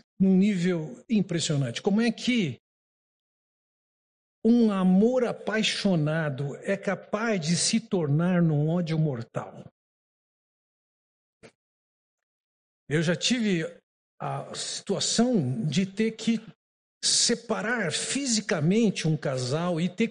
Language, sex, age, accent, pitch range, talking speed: Portuguese, male, 60-79, Brazilian, 165-220 Hz, 95 wpm